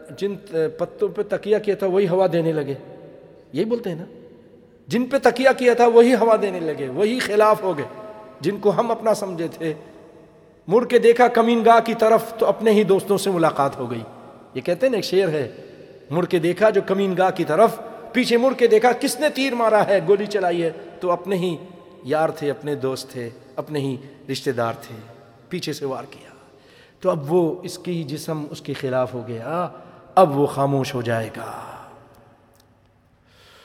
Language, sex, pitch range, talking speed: English, male, 150-215 Hz, 145 wpm